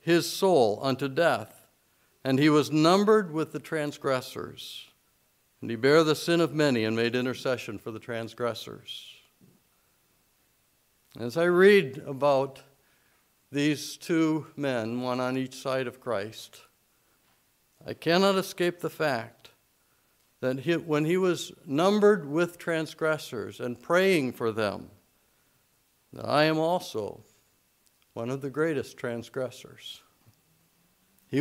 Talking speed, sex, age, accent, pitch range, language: 120 wpm, male, 60-79, American, 125-170 Hz, English